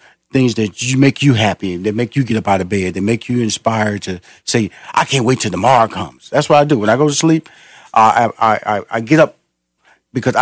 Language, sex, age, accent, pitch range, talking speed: English, male, 40-59, American, 105-130 Hz, 240 wpm